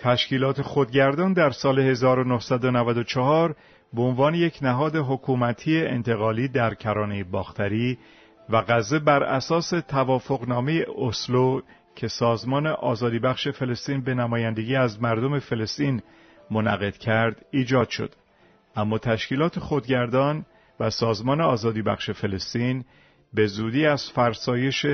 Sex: male